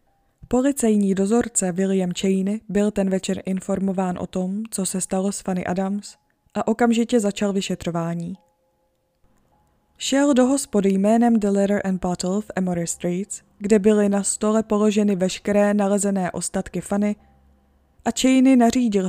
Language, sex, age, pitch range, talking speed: Czech, female, 20-39, 190-225 Hz, 135 wpm